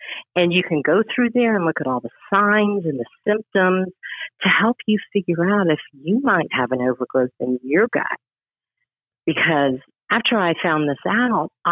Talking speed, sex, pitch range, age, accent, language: 180 wpm, female, 145-210 Hz, 50-69, American, English